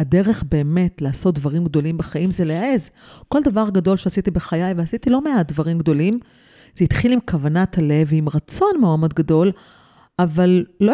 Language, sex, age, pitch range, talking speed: Hebrew, female, 40-59, 165-235 Hz, 165 wpm